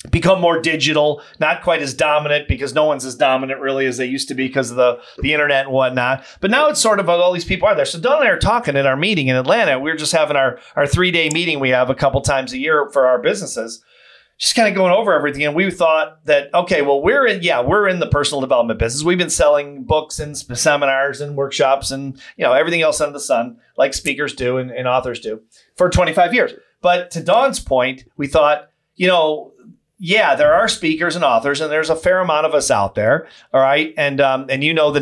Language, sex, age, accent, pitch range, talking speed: English, male, 40-59, American, 130-165 Hz, 245 wpm